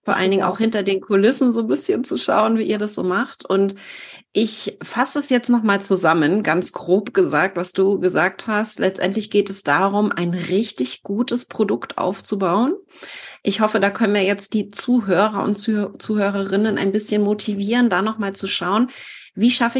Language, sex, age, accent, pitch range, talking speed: German, female, 30-49, German, 190-230 Hz, 185 wpm